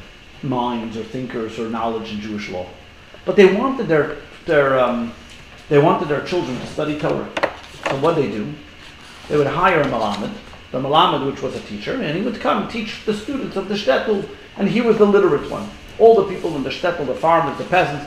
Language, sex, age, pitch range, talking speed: English, male, 50-69, 125-200 Hz, 215 wpm